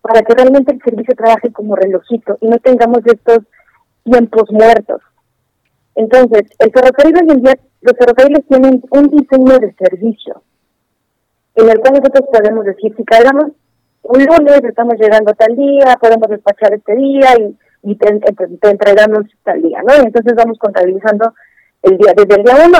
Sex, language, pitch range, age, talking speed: female, Spanish, 195-245 Hz, 40-59, 165 wpm